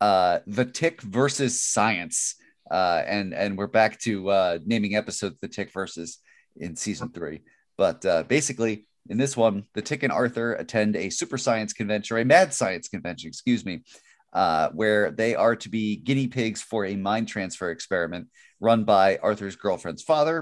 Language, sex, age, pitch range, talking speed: English, male, 30-49, 105-125 Hz, 175 wpm